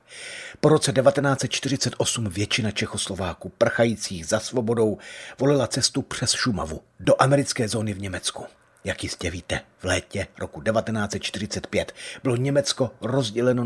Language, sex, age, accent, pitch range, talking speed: Czech, male, 40-59, native, 100-130 Hz, 120 wpm